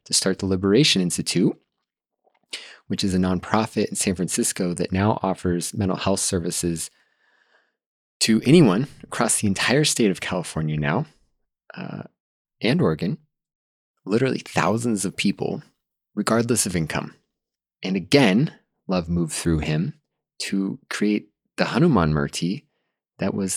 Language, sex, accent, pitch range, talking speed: English, male, American, 85-105 Hz, 125 wpm